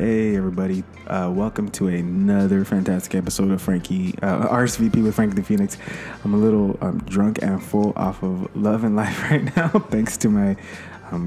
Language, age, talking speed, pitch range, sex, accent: English, 20-39, 180 wpm, 95-110 Hz, male, American